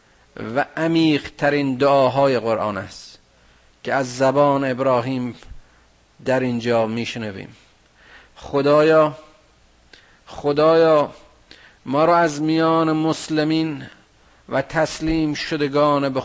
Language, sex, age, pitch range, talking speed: Persian, male, 50-69, 115-150 Hz, 90 wpm